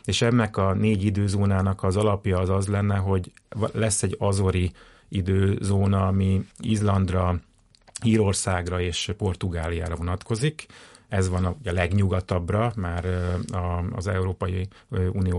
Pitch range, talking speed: 90-105 Hz, 115 wpm